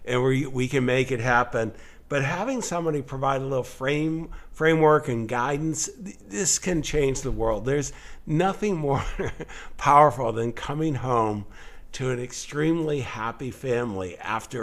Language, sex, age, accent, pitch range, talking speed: English, male, 50-69, American, 120-145 Hz, 145 wpm